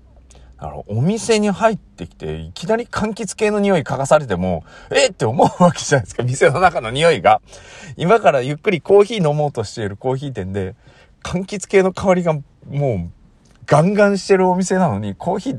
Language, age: Japanese, 40-59